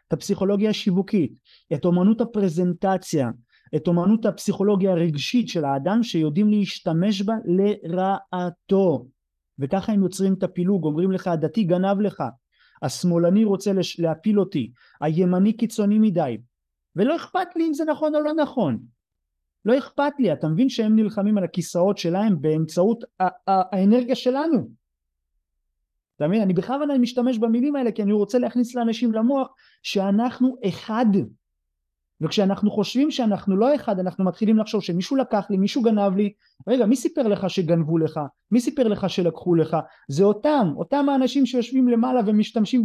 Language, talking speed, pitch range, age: Hebrew, 145 wpm, 170-230 Hz, 30-49